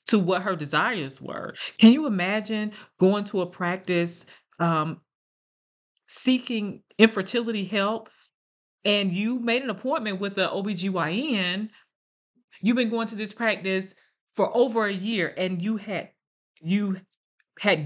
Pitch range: 170-215 Hz